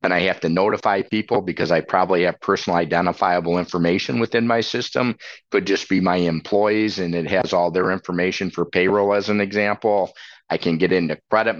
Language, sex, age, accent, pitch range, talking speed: English, male, 50-69, American, 85-110 Hz, 190 wpm